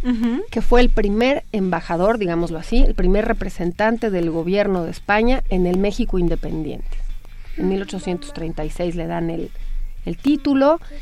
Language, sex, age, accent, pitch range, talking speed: Spanish, female, 40-59, Mexican, 175-225 Hz, 135 wpm